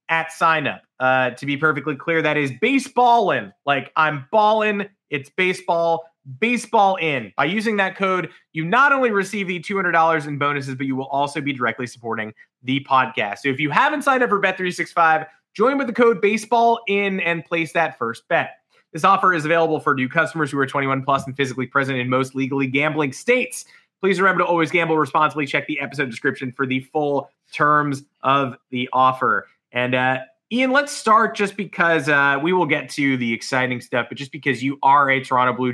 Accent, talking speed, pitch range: American, 205 wpm, 135-180 Hz